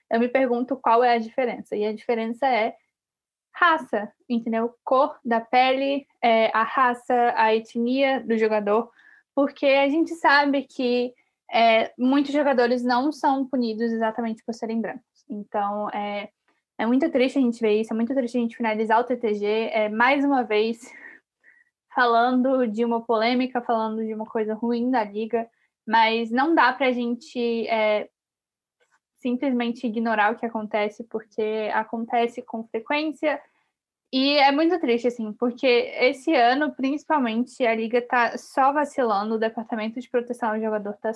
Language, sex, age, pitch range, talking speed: Portuguese, female, 10-29, 225-275 Hz, 150 wpm